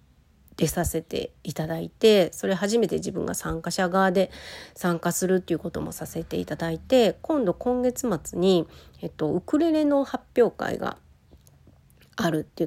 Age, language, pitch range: 40-59, Japanese, 165-215 Hz